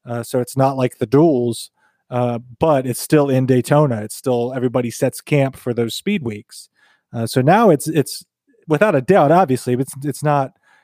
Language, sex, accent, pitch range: English, male, American, 120-150 Hz